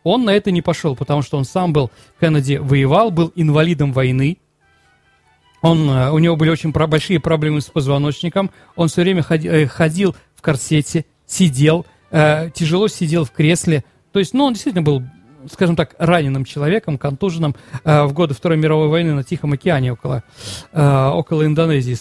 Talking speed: 160 wpm